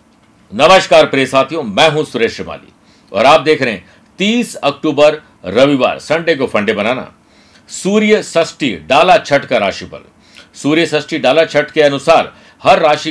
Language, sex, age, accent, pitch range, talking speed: Hindi, male, 50-69, native, 125-155 Hz, 150 wpm